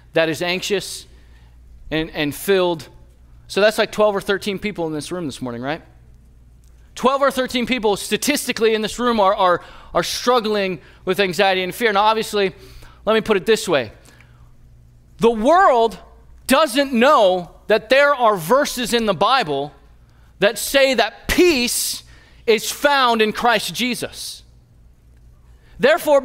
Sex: male